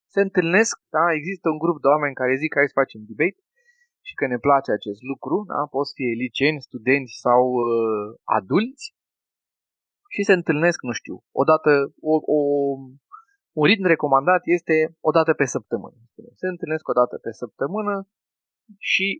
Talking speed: 165 wpm